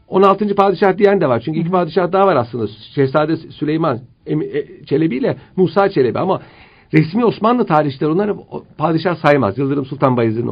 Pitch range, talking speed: 115-170 Hz, 155 wpm